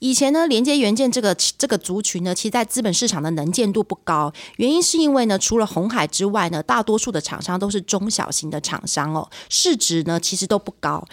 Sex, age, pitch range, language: female, 30-49, 180-245 Hz, Chinese